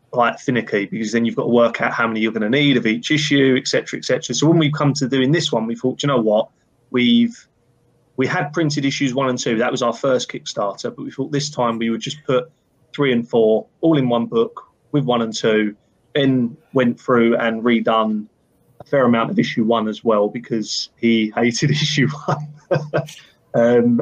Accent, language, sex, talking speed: British, English, male, 220 wpm